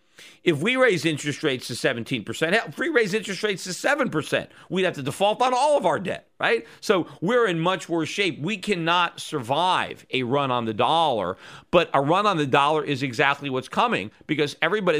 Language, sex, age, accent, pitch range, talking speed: English, male, 40-59, American, 140-180 Hz, 205 wpm